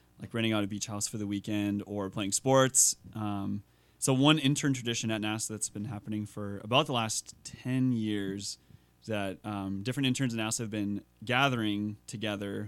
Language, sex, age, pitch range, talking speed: English, male, 20-39, 105-125 Hz, 185 wpm